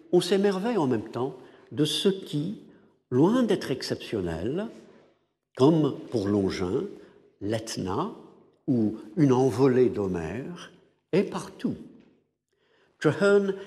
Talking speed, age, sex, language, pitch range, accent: 95 wpm, 60-79, male, French, 120-185 Hz, French